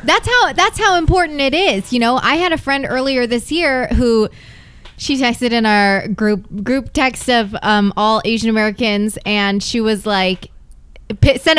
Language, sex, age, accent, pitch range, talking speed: English, female, 20-39, American, 200-270 Hz, 175 wpm